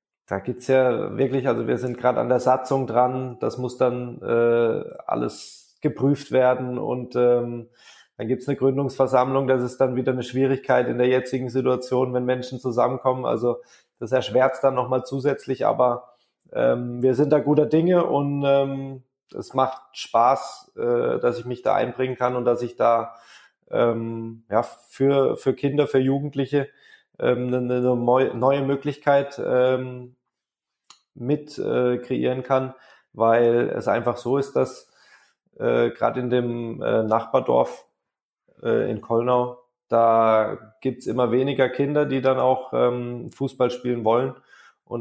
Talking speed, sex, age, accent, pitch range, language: 155 wpm, male, 20-39, German, 120-130 Hz, German